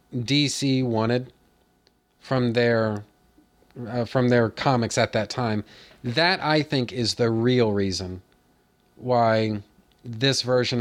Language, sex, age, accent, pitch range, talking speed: English, male, 40-59, American, 110-135 Hz, 115 wpm